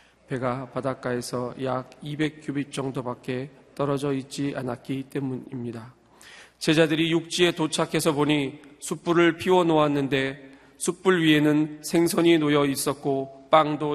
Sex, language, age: male, Korean, 40-59